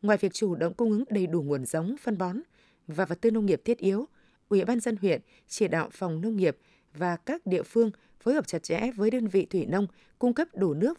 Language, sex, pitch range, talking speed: Vietnamese, female, 185-230 Hz, 245 wpm